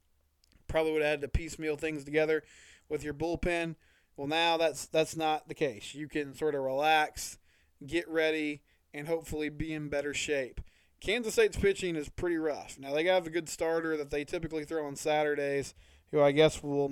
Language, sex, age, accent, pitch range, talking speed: English, male, 20-39, American, 140-165 Hz, 190 wpm